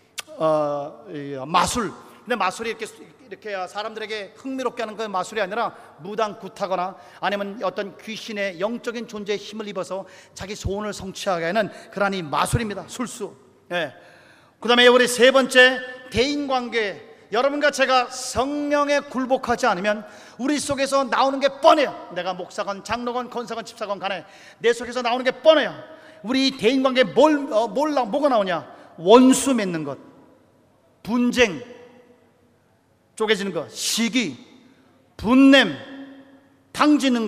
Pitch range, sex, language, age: 215-270 Hz, male, Korean, 40-59